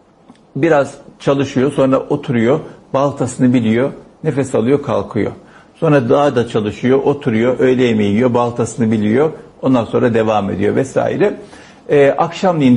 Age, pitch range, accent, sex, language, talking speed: 60-79, 120-165 Hz, native, male, Turkish, 115 wpm